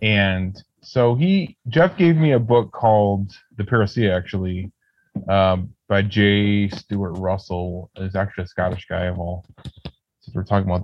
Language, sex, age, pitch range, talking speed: English, male, 20-39, 95-110 Hz, 160 wpm